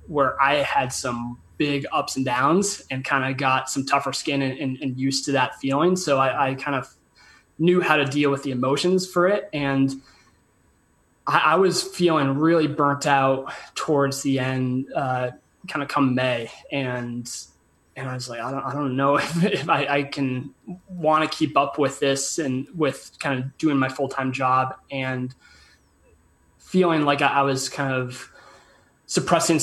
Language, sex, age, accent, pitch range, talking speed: English, male, 20-39, American, 130-150 Hz, 180 wpm